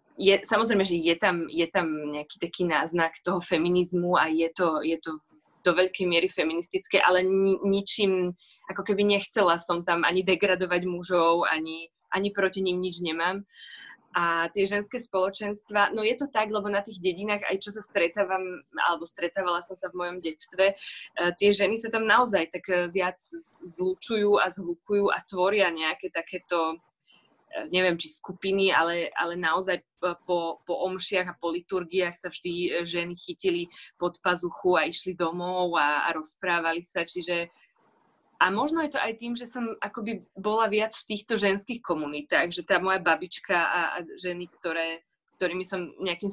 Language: Slovak